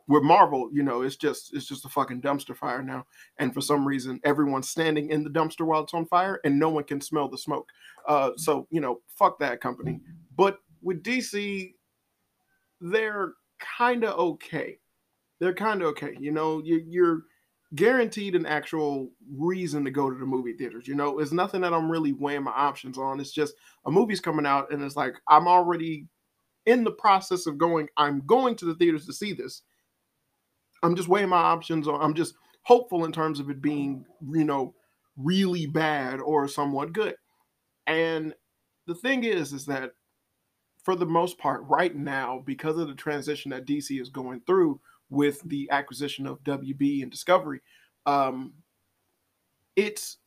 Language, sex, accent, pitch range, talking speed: English, male, American, 140-170 Hz, 180 wpm